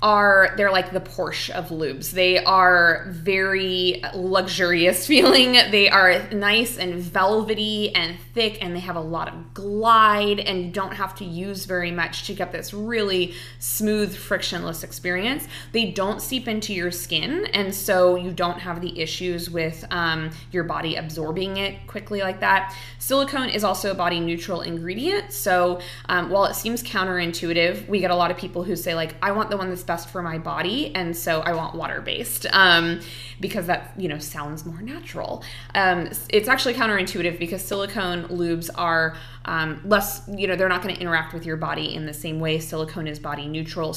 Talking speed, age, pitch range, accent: 180 wpm, 20-39, 165-200 Hz, American